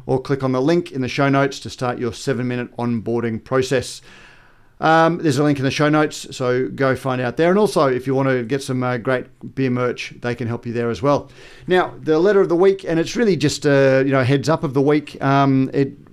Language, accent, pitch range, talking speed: English, Australian, 125-145 Hz, 255 wpm